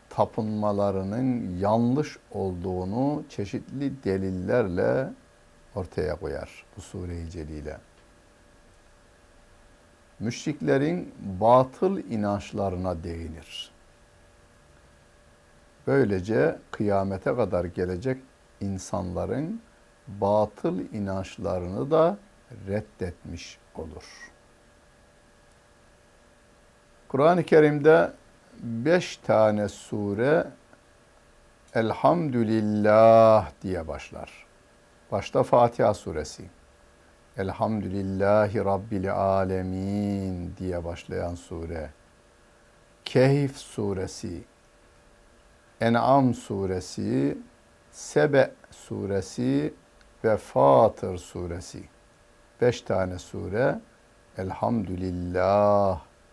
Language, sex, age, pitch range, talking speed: Turkish, male, 60-79, 90-115 Hz, 60 wpm